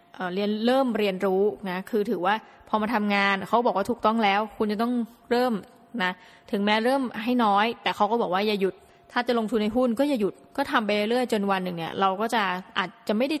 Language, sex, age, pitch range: Thai, female, 20-39, 195-240 Hz